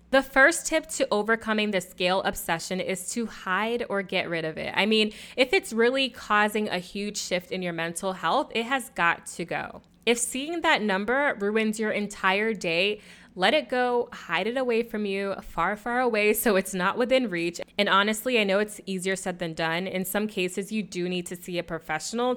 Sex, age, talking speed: female, 20-39, 205 wpm